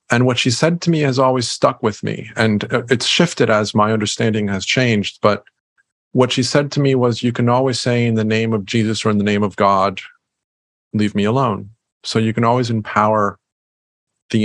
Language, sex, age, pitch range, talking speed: English, male, 40-59, 105-120 Hz, 210 wpm